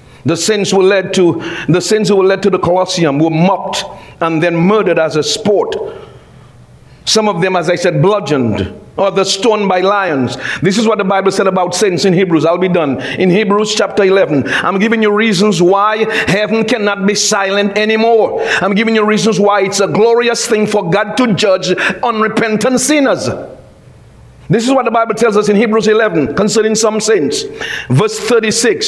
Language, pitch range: English, 190-255 Hz